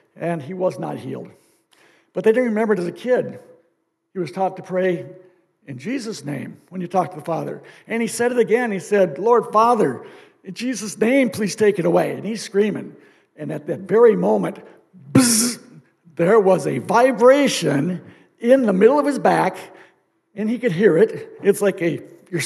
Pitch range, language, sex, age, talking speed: 170-225 Hz, English, male, 60-79, 190 wpm